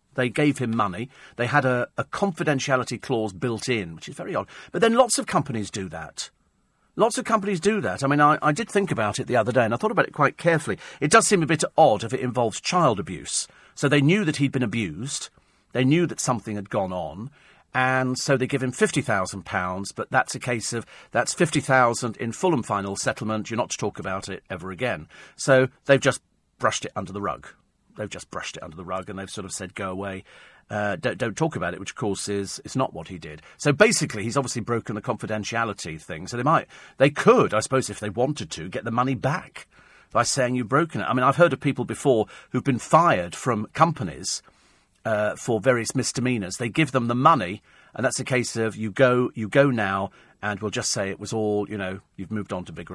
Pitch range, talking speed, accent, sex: 105-145 Hz, 235 wpm, British, male